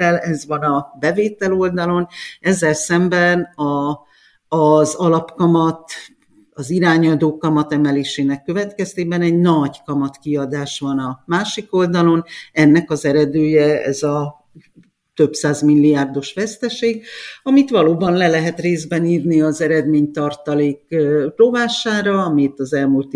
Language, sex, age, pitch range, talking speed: Hungarian, female, 50-69, 135-165 Hz, 120 wpm